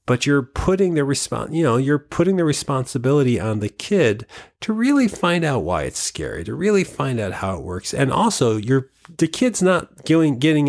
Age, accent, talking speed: 40-59, American, 195 wpm